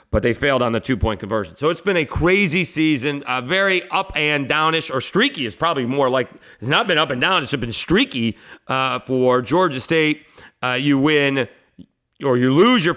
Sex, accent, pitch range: male, American, 115-155 Hz